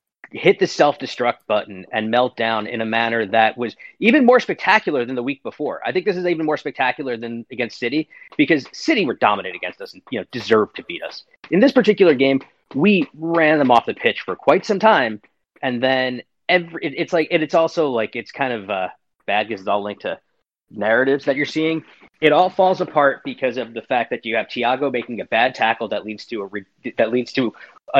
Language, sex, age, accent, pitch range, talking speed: English, male, 30-49, American, 120-185 Hz, 230 wpm